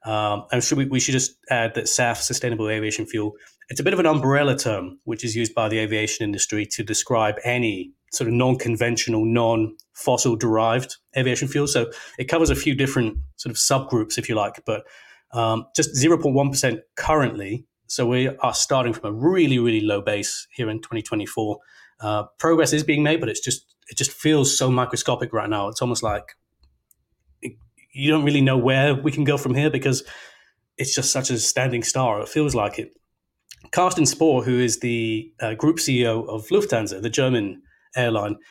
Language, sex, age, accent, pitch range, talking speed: English, male, 30-49, British, 110-140 Hz, 185 wpm